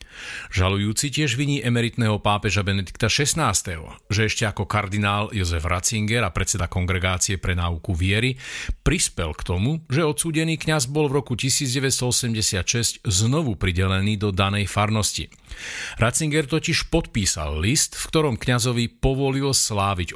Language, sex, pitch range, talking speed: Slovak, male, 100-135 Hz, 130 wpm